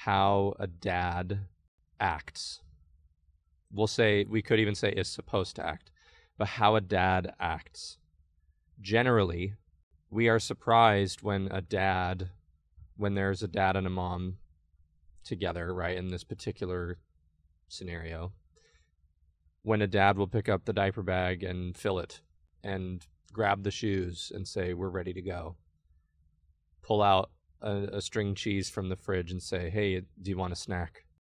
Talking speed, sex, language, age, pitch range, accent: 150 wpm, male, English, 20-39, 80-105 Hz, American